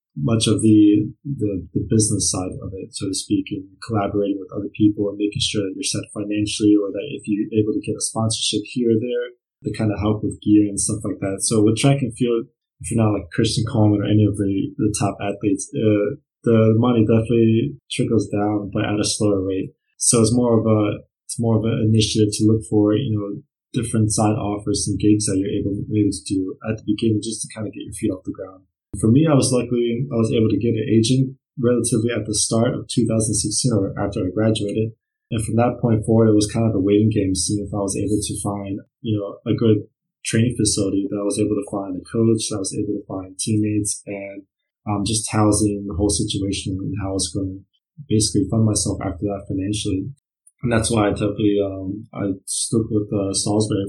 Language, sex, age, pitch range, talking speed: English, male, 20-39, 100-115 Hz, 230 wpm